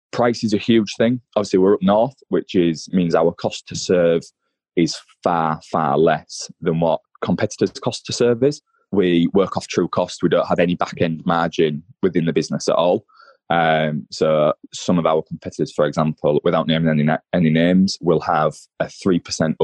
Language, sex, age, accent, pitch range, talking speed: English, male, 20-39, British, 80-95 Hz, 185 wpm